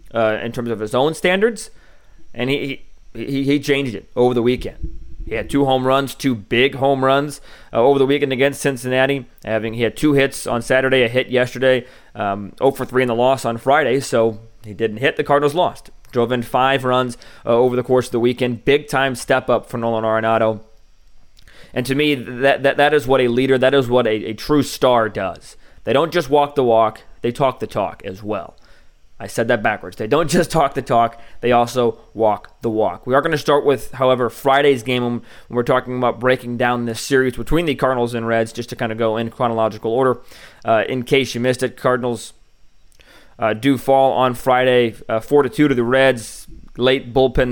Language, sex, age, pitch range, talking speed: English, male, 20-39, 115-135 Hz, 215 wpm